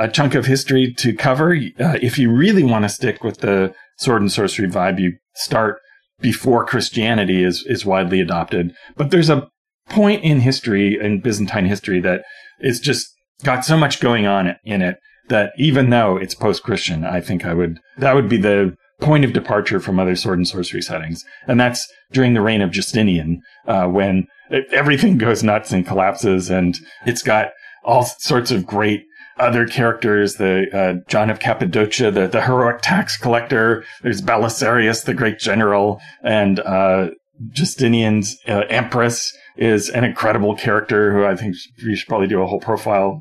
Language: English